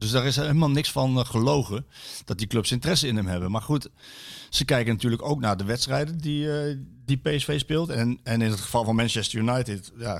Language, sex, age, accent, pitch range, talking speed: Dutch, male, 50-69, Dutch, 100-125 Hz, 220 wpm